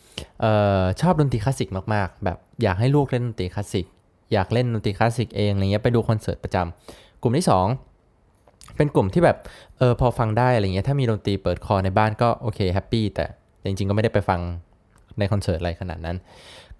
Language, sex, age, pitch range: Thai, male, 20-39, 95-120 Hz